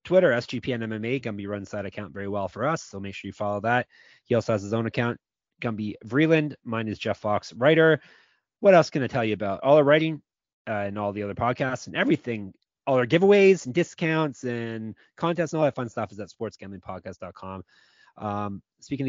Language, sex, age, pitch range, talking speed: English, male, 30-49, 105-140 Hz, 205 wpm